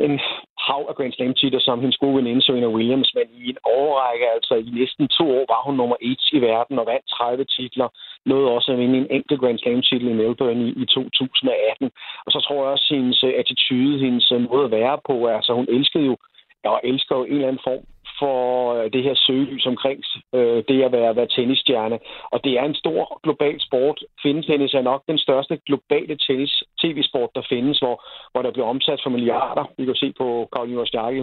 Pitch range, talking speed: 125-140 Hz, 210 wpm